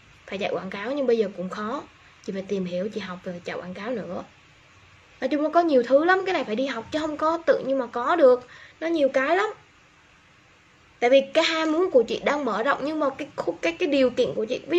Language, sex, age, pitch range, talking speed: Vietnamese, female, 10-29, 220-300 Hz, 260 wpm